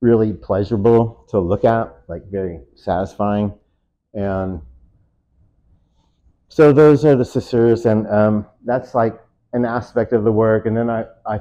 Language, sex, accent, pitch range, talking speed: English, male, American, 95-115 Hz, 140 wpm